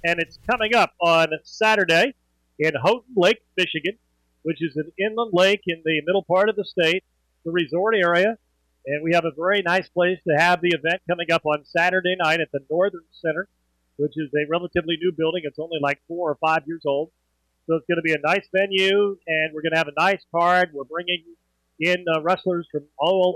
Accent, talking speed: American, 210 wpm